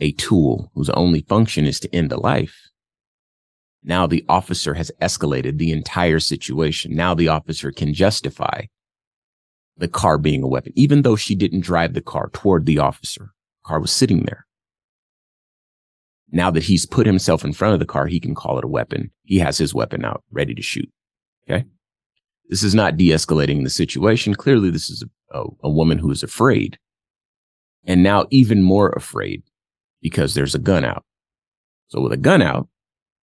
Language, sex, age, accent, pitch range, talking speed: English, male, 30-49, American, 75-95 Hz, 175 wpm